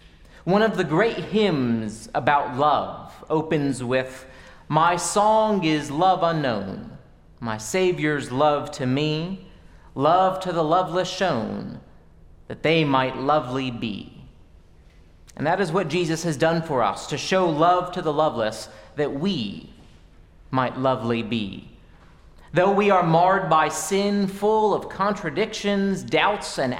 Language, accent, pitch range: English, American, 130-185 Hz